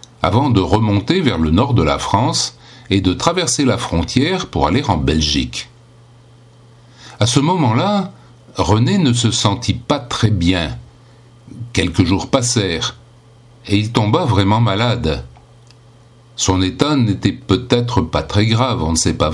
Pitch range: 95-125 Hz